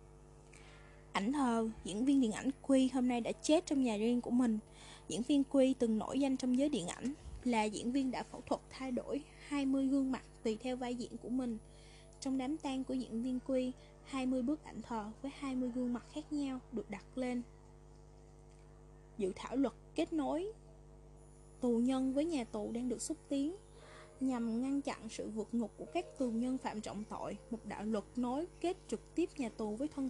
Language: Vietnamese